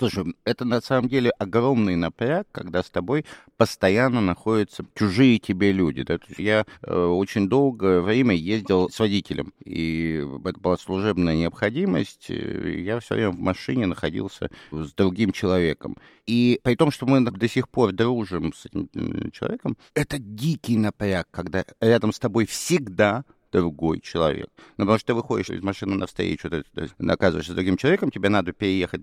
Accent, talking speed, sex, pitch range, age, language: native, 155 wpm, male, 90-120 Hz, 50-69, Russian